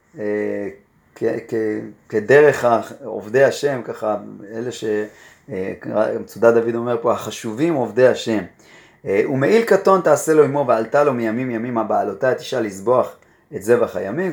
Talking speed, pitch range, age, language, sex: 125 wpm, 115-150 Hz, 30-49, Hebrew, male